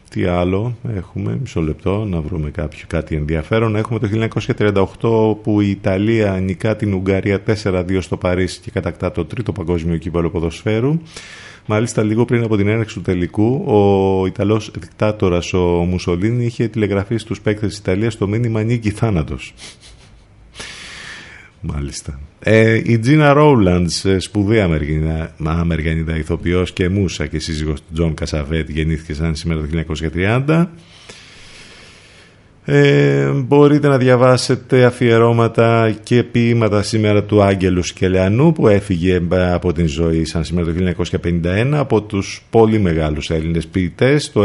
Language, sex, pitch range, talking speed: Greek, male, 85-110 Hz, 130 wpm